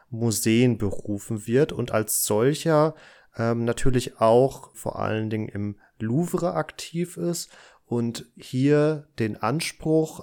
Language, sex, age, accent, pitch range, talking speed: German, male, 30-49, German, 110-130 Hz, 115 wpm